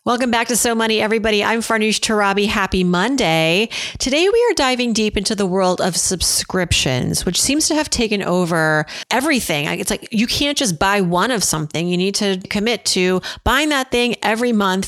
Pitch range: 180-240 Hz